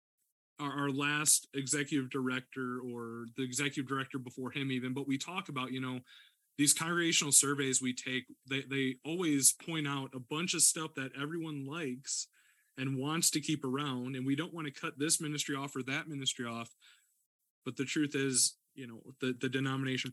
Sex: male